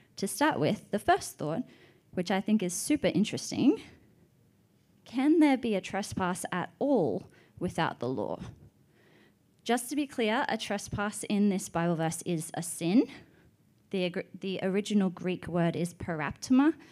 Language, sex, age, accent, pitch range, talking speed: English, female, 20-39, Australian, 170-260 Hz, 150 wpm